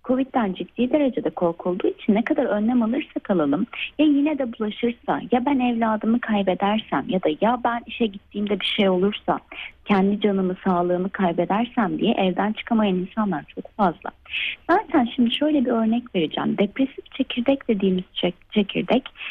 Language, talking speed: Turkish, 145 wpm